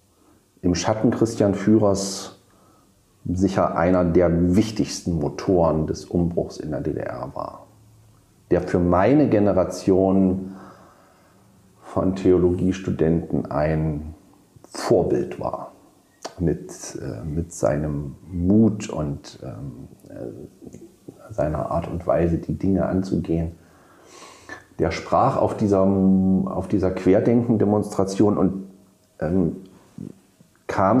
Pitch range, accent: 90-105 Hz, German